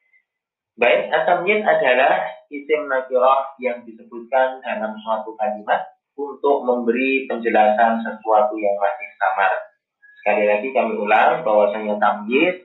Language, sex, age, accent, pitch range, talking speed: Indonesian, male, 30-49, native, 115-180 Hz, 110 wpm